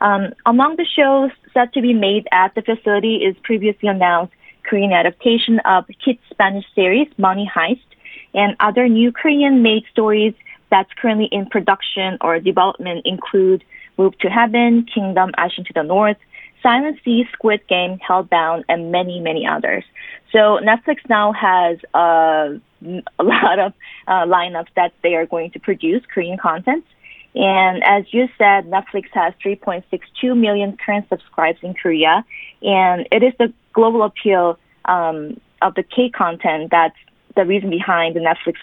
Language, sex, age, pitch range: Korean, female, 20-39, 180-235 Hz